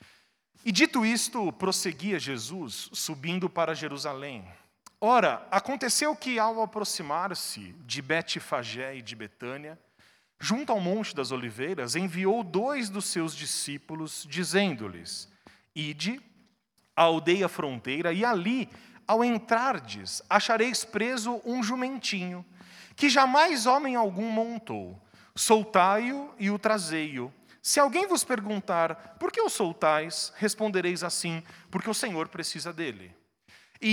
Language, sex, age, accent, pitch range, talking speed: Portuguese, male, 40-59, Brazilian, 150-220 Hz, 115 wpm